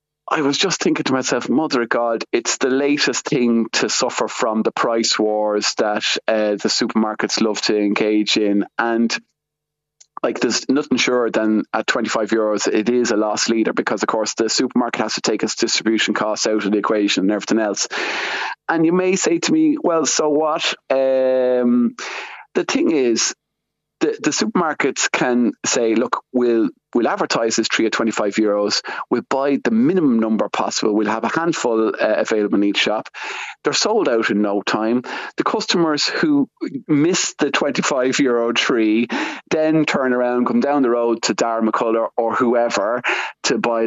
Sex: male